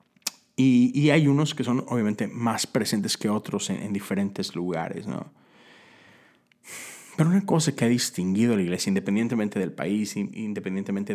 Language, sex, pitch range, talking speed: Spanish, male, 105-140 Hz, 155 wpm